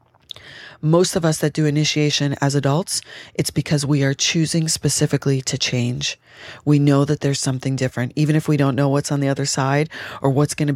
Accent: American